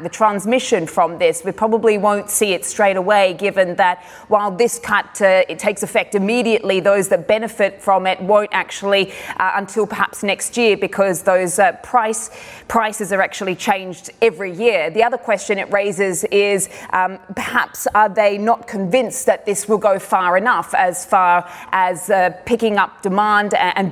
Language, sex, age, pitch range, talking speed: English, female, 20-39, 185-215 Hz, 175 wpm